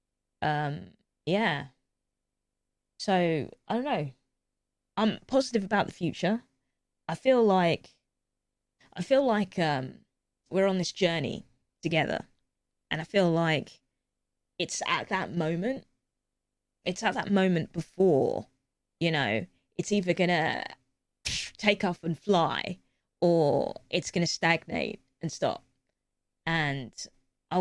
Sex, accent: female, British